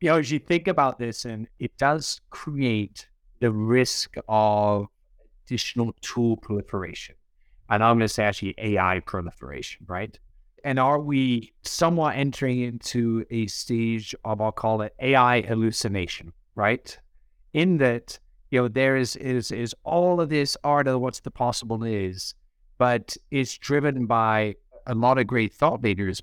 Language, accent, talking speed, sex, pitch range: English, American, 155 wpm, male, 105-130 Hz